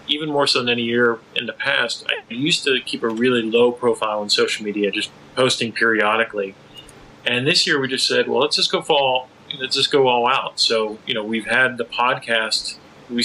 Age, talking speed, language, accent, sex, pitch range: 30-49, 215 wpm, English, American, male, 105-125 Hz